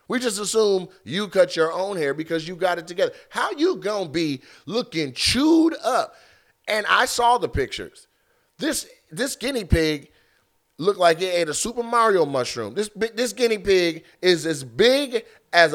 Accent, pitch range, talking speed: American, 150-250 Hz, 170 wpm